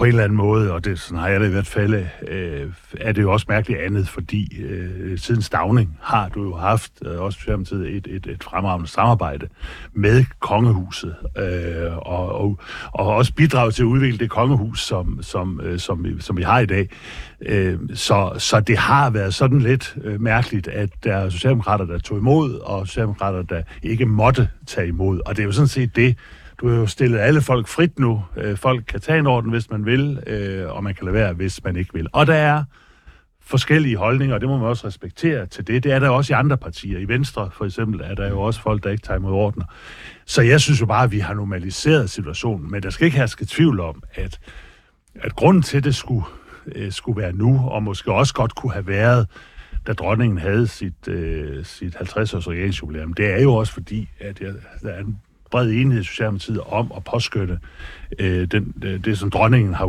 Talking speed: 210 wpm